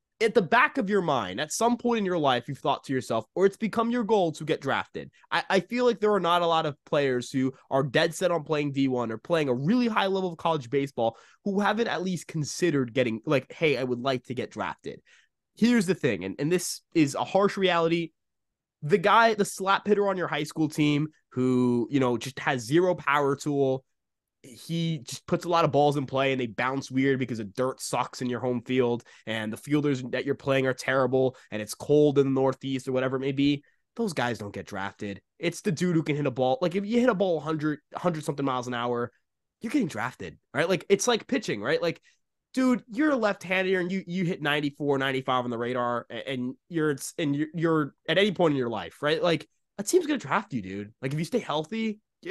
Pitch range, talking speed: 130-190 Hz, 235 wpm